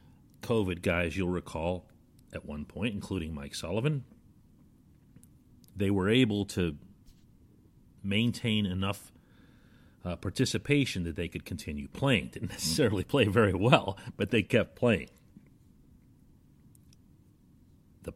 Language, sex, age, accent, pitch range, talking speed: English, male, 40-59, American, 85-115 Hz, 110 wpm